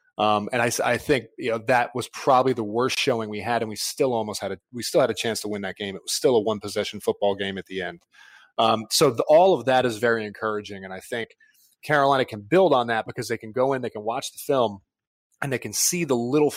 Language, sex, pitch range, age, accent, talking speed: English, male, 105-135 Hz, 30-49, American, 270 wpm